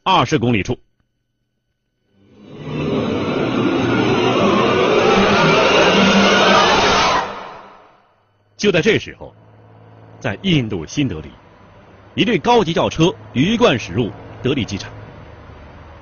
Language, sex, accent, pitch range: Chinese, male, native, 100-165 Hz